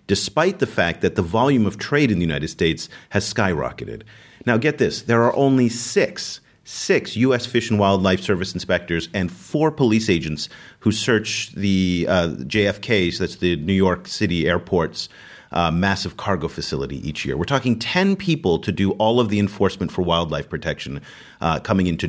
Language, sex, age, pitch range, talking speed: English, male, 40-59, 95-120 Hz, 175 wpm